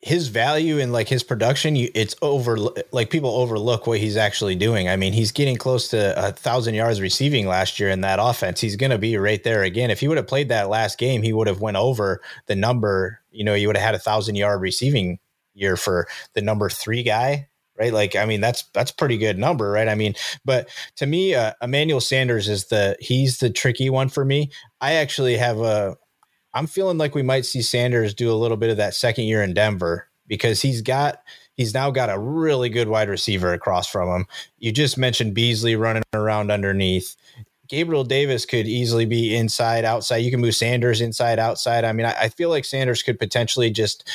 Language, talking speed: English, 215 wpm